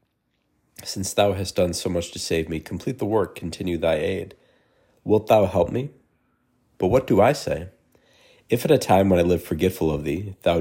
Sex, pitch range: male, 80-95 Hz